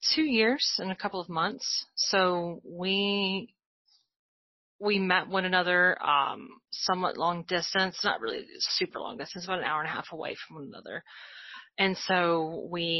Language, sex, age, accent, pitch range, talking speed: English, female, 30-49, American, 170-195 Hz, 160 wpm